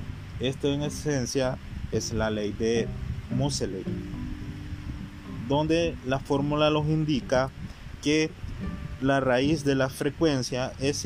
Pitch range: 110-145 Hz